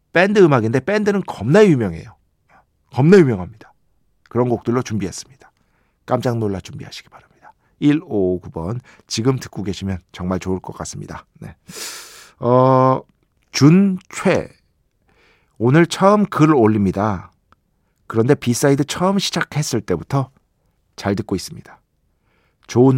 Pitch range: 100-135 Hz